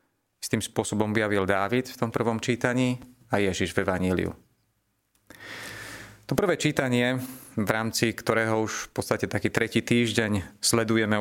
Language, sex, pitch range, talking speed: Slovak, male, 105-125 Hz, 140 wpm